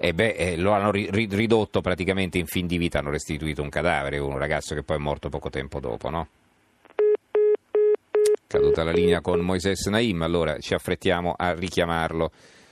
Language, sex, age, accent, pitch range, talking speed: Italian, male, 40-59, native, 80-100 Hz, 170 wpm